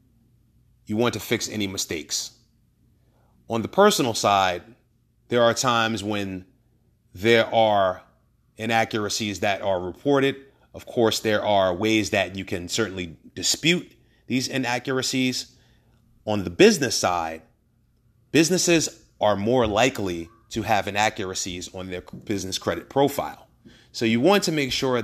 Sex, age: male, 30-49